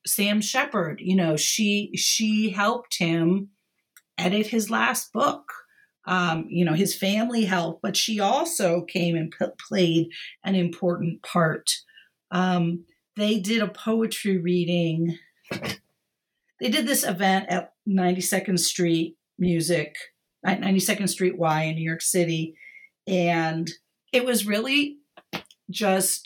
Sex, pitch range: female, 170-215 Hz